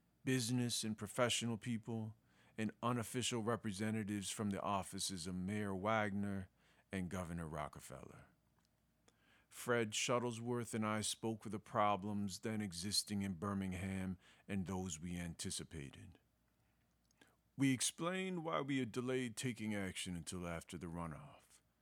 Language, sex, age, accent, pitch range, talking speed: English, male, 50-69, American, 90-110 Hz, 120 wpm